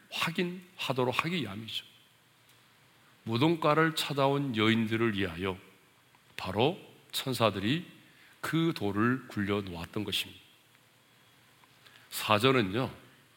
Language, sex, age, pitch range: Korean, male, 40-59, 110-145 Hz